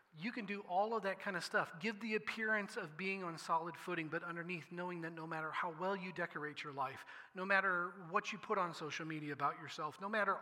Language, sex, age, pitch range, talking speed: English, male, 40-59, 155-200 Hz, 235 wpm